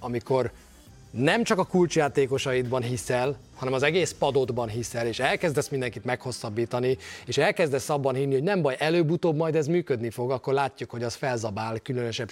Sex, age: male, 30-49